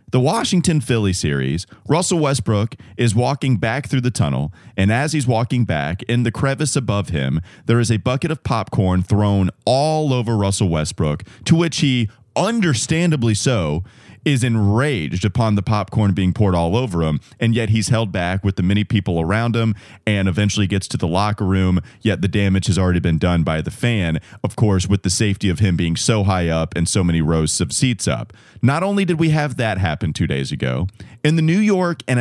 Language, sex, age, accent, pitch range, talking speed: English, male, 30-49, American, 95-135 Hz, 205 wpm